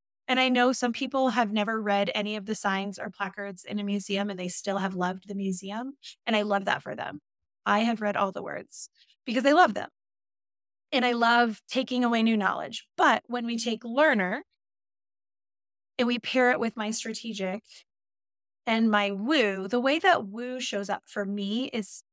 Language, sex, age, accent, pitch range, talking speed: English, female, 20-39, American, 200-255 Hz, 195 wpm